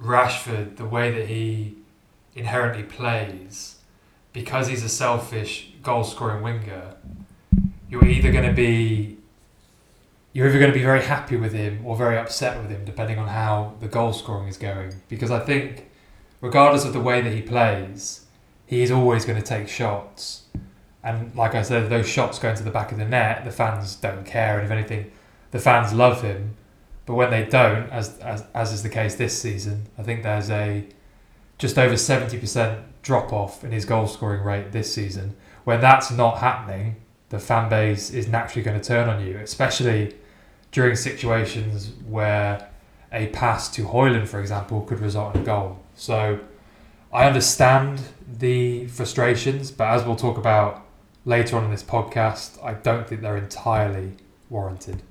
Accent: British